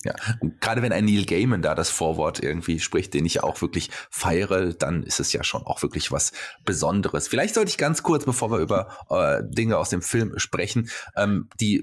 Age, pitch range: 30-49, 100-135 Hz